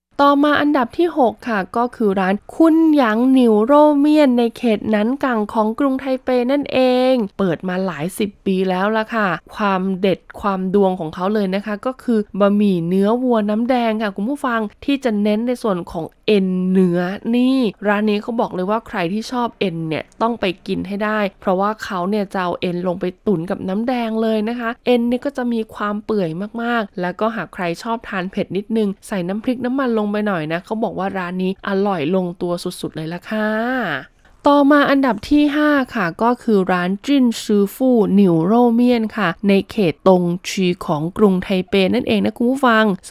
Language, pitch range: Thai, 190-235 Hz